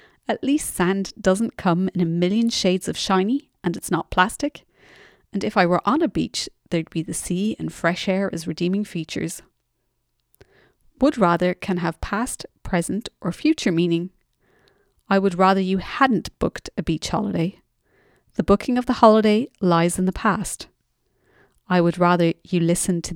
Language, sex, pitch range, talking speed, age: English, female, 175-220 Hz, 170 wpm, 30-49